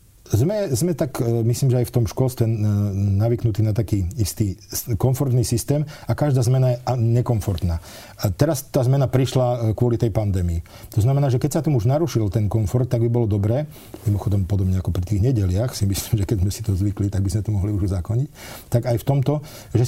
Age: 40-59